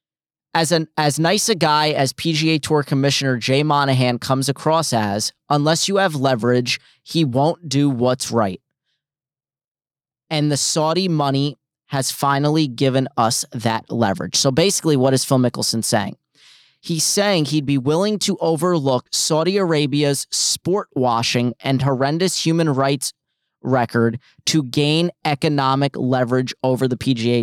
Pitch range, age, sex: 130-160 Hz, 30-49, male